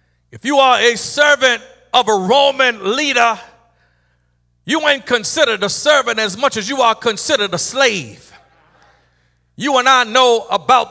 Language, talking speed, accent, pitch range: English, 150 wpm, American, 205-275 Hz